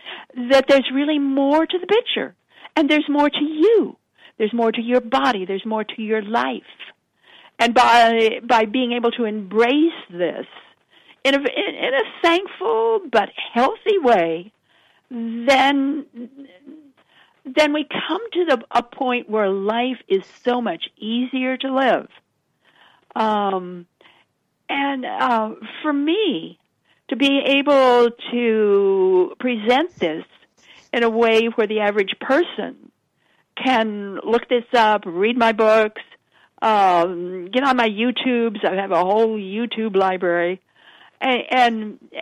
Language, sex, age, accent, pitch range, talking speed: English, female, 60-79, American, 220-275 Hz, 125 wpm